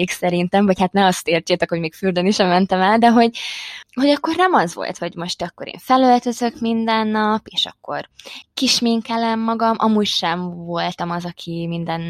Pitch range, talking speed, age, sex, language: 170-205 Hz, 185 wpm, 20-39, female, Hungarian